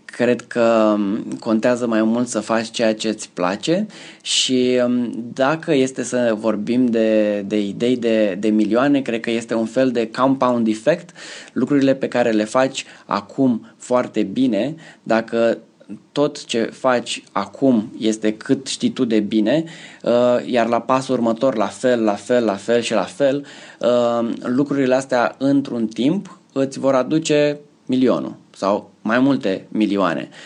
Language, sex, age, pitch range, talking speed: Romanian, male, 20-39, 115-140 Hz, 145 wpm